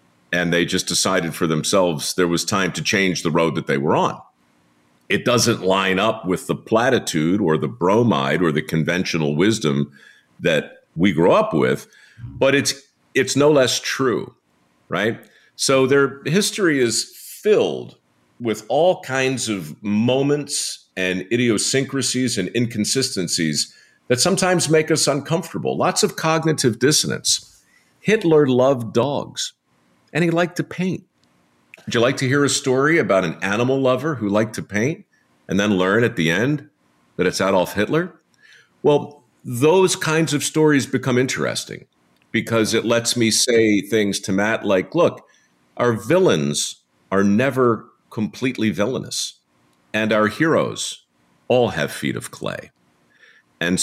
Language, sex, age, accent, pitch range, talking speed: English, male, 50-69, American, 85-135 Hz, 145 wpm